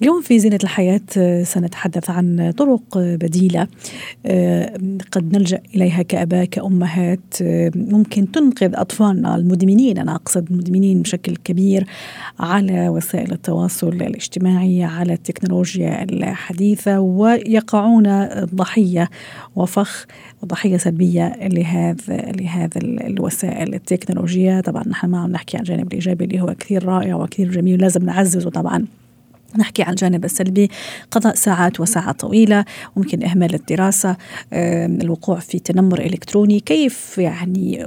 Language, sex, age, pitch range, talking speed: Arabic, female, 40-59, 180-205 Hz, 115 wpm